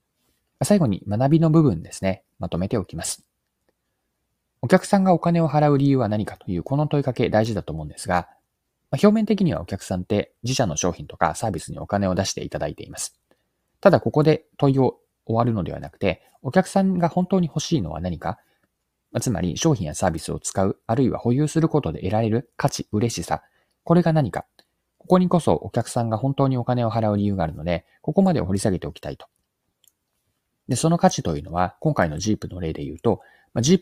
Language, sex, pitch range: Japanese, male, 95-155 Hz